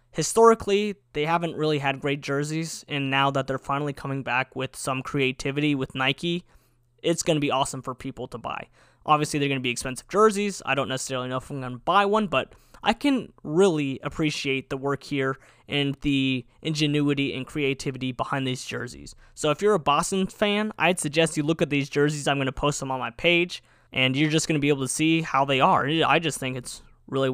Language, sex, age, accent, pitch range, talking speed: English, male, 20-39, American, 130-160 Hz, 215 wpm